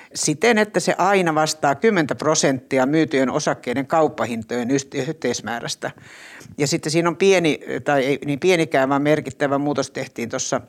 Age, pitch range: 60-79, 125-155 Hz